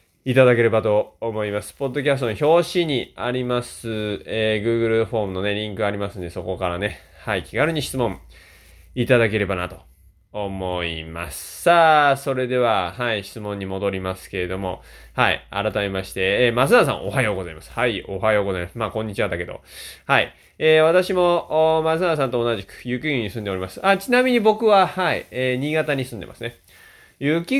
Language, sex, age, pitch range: Japanese, male, 20-39, 95-135 Hz